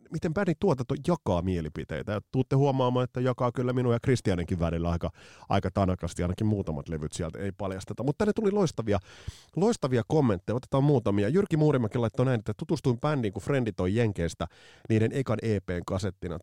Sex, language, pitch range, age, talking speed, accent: male, Finnish, 95-130 Hz, 30-49, 160 wpm, native